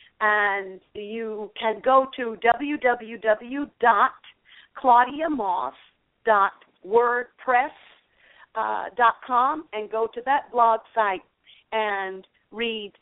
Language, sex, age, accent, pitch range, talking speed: English, female, 50-69, American, 195-245 Hz, 65 wpm